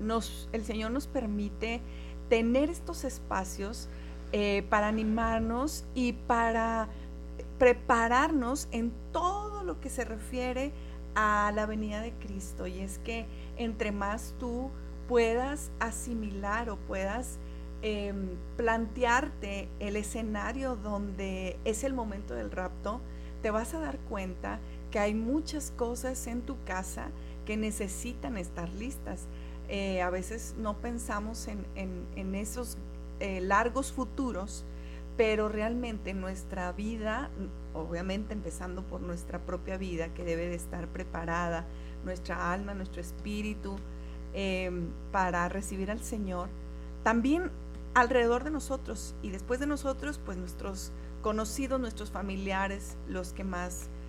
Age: 40-59